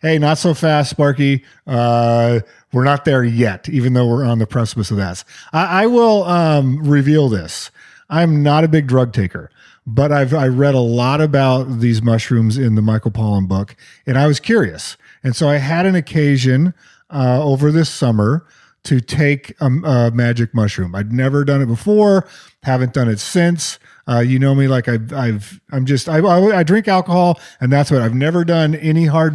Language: English